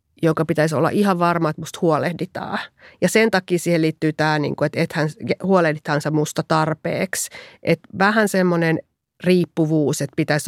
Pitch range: 145-170 Hz